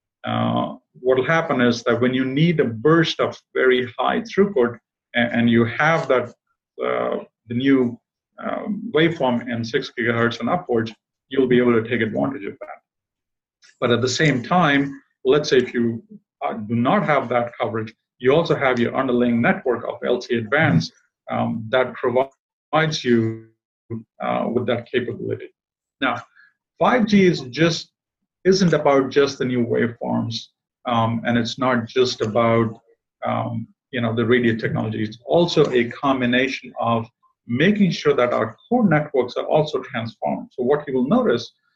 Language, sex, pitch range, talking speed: English, male, 120-150 Hz, 160 wpm